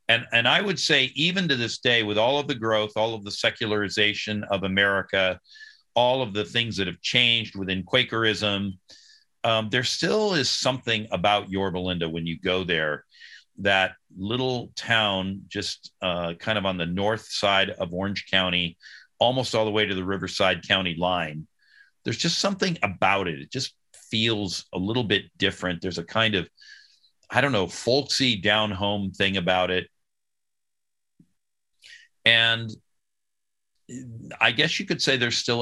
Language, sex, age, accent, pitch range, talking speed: English, male, 50-69, American, 95-115 Hz, 165 wpm